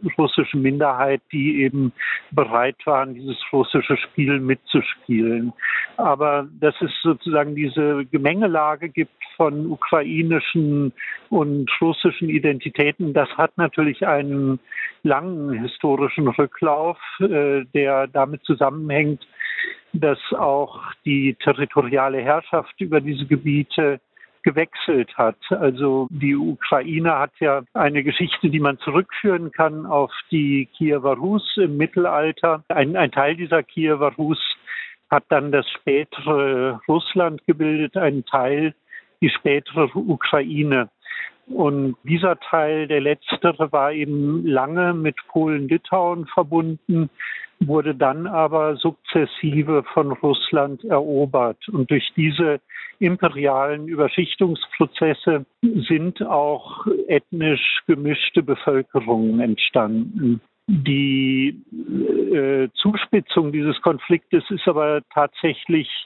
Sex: male